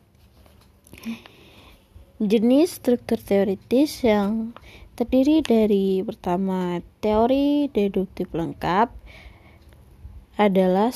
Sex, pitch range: female, 195-235 Hz